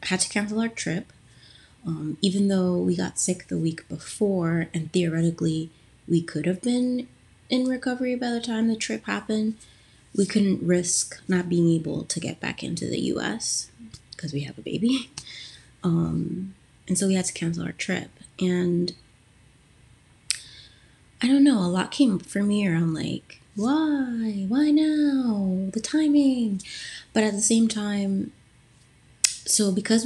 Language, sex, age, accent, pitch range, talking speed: English, female, 20-39, American, 160-205 Hz, 155 wpm